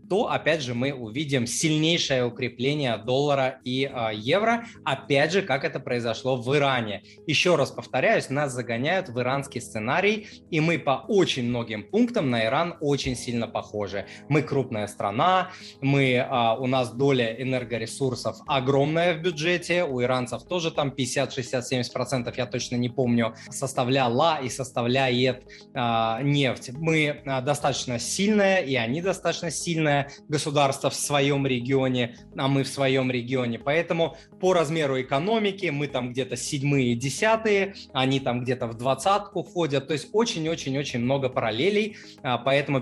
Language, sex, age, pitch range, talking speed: Russian, male, 20-39, 125-155 Hz, 135 wpm